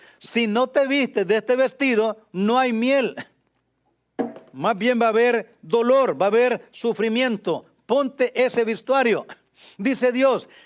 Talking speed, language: 140 wpm, English